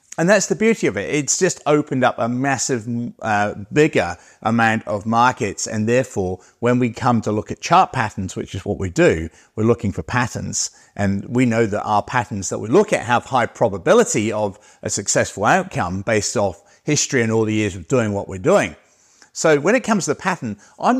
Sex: male